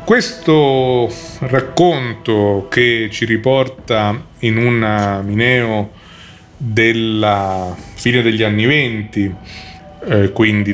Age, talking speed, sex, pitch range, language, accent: 30-49, 80 wpm, male, 100-125 Hz, Italian, native